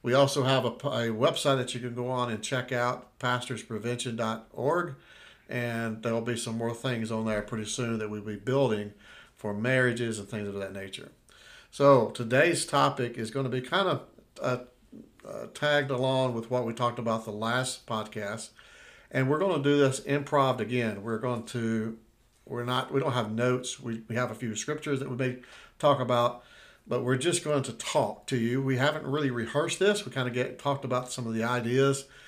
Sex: male